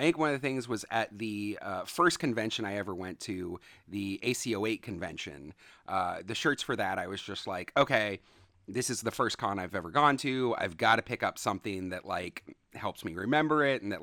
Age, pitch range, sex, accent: 30-49, 95-135 Hz, male, American